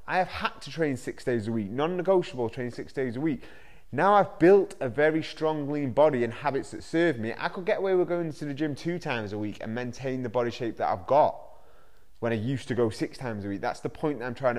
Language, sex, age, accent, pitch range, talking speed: English, male, 20-39, British, 125-155 Hz, 265 wpm